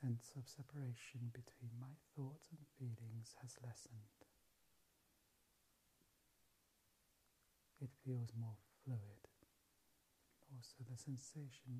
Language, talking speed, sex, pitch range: English, 85 wpm, male, 110-130 Hz